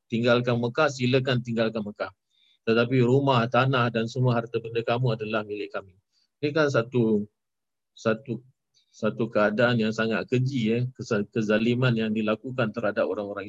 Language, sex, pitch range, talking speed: Malay, male, 110-125 Hz, 140 wpm